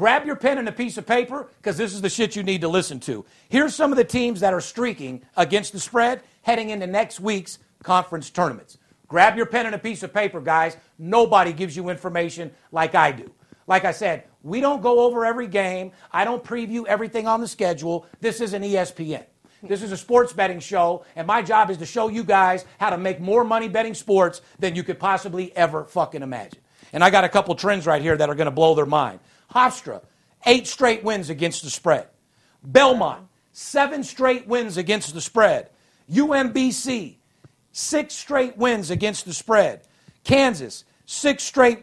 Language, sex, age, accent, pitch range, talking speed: English, male, 50-69, American, 175-240 Hz, 200 wpm